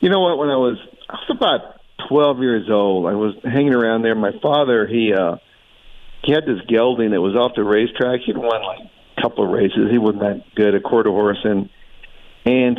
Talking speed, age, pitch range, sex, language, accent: 210 wpm, 50-69, 105-130 Hz, male, English, American